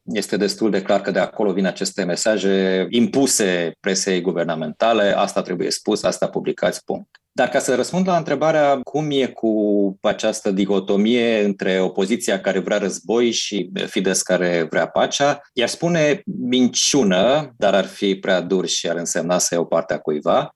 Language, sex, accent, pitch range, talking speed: Romanian, male, native, 95-140 Hz, 160 wpm